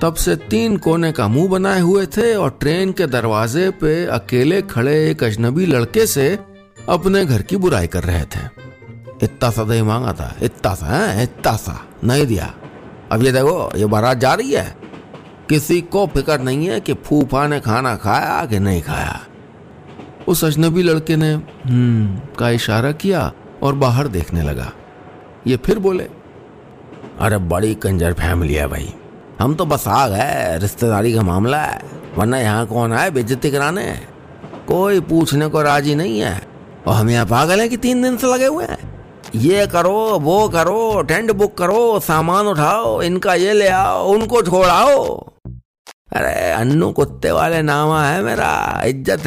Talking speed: 150 wpm